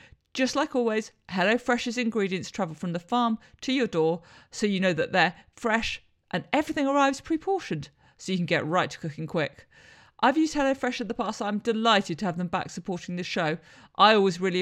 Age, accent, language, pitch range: 50-69, British, English, 175-225 Hz